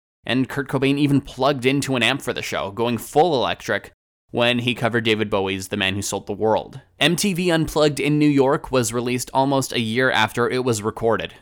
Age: 20-39